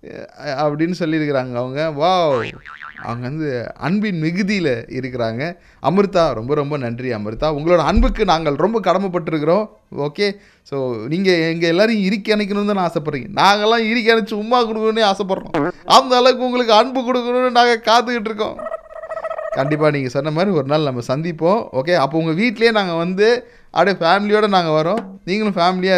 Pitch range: 150-215 Hz